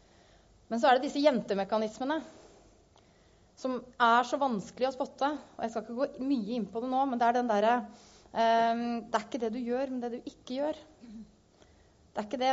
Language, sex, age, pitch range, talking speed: English, female, 30-49, 210-255 Hz, 215 wpm